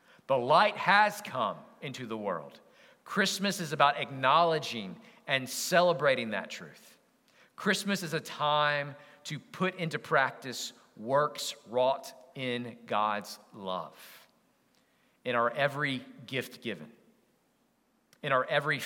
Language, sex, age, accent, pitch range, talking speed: English, male, 40-59, American, 135-175 Hz, 115 wpm